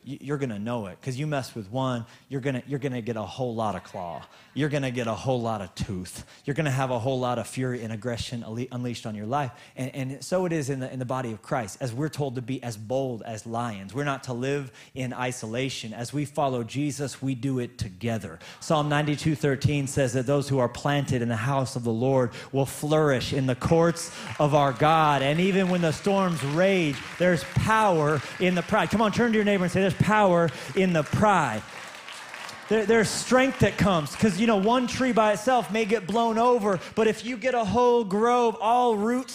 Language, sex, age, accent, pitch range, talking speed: English, male, 30-49, American, 130-215 Hz, 230 wpm